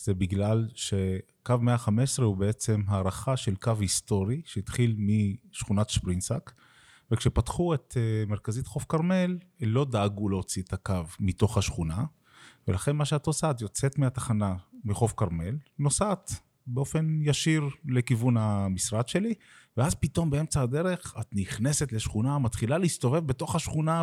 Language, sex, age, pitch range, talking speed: Hebrew, male, 30-49, 100-135 Hz, 125 wpm